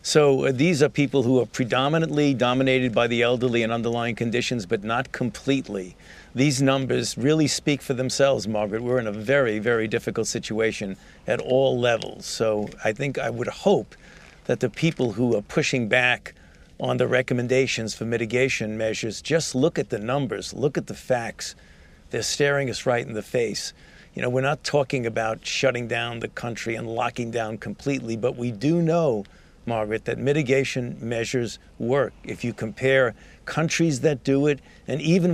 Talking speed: 170 wpm